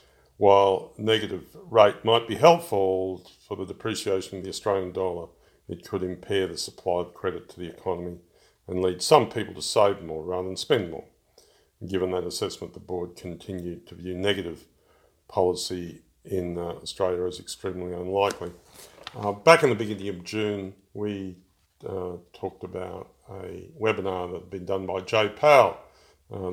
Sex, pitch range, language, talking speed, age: male, 90-105 Hz, English, 160 wpm, 50-69